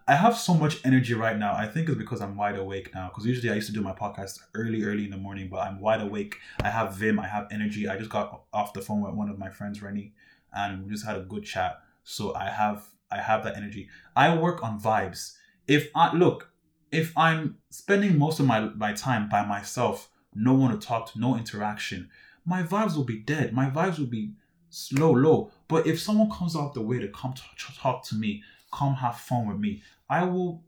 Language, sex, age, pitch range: English, male, 20-39, 105-145 Hz